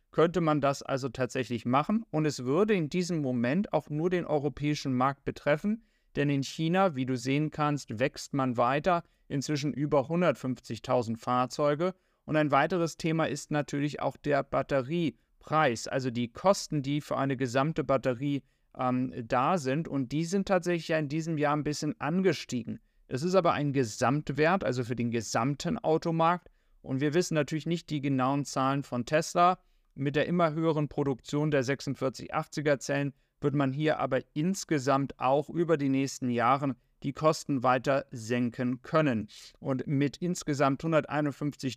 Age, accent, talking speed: 30-49, German, 160 wpm